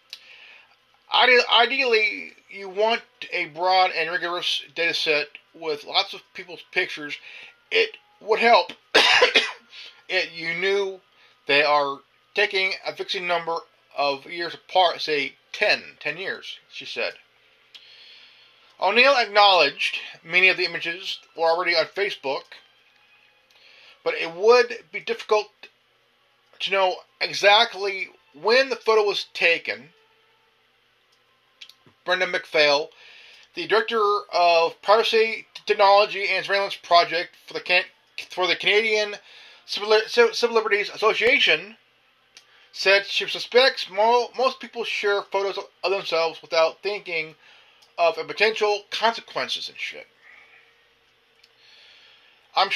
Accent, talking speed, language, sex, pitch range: American, 110 wpm, English, male, 180-250 Hz